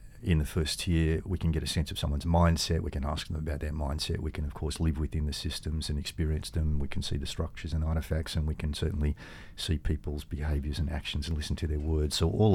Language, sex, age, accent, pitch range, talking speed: English, male, 50-69, Australian, 80-90 Hz, 255 wpm